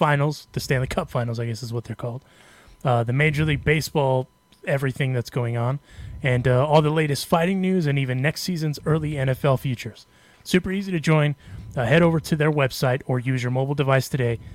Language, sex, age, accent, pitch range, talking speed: English, male, 30-49, American, 125-150 Hz, 205 wpm